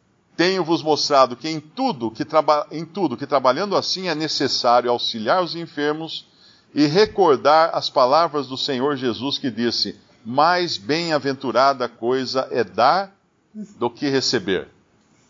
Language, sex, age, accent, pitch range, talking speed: Portuguese, male, 50-69, Brazilian, 125-160 Hz, 120 wpm